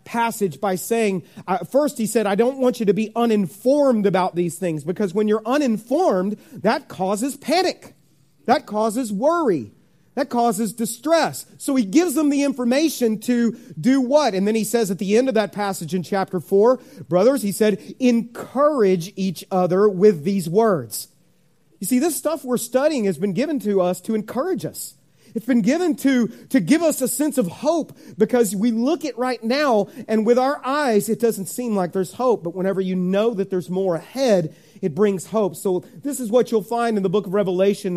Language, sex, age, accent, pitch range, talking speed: English, male, 40-59, American, 190-245 Hz, 195 wpm